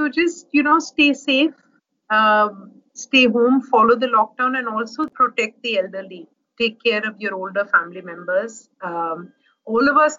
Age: 50-69